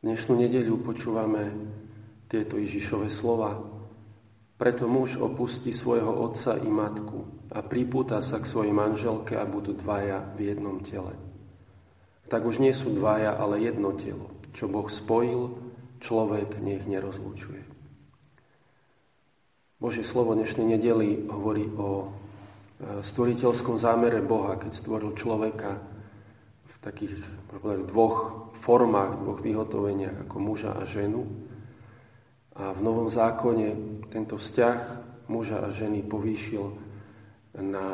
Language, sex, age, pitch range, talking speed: Slovak, male, 40-59, 100-115 Hz, 115 wpm